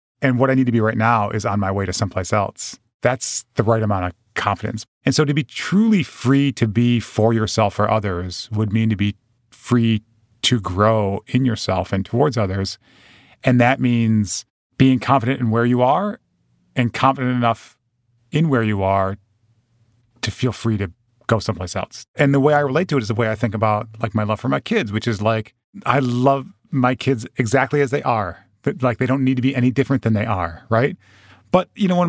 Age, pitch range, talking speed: 30-49, 110-150 Hz, 215 wpm